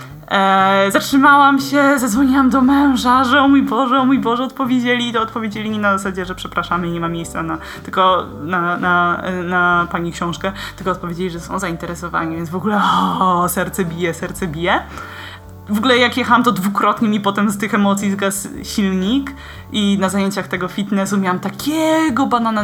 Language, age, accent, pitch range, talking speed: Polish, 20-39, native, 190-255 Hz, 180 wpm